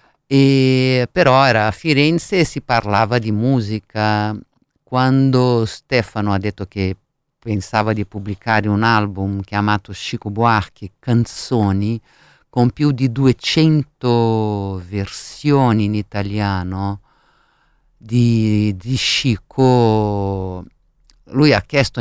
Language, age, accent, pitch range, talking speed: Italian, 50-69, native, 100-125 Hz, 100 wpm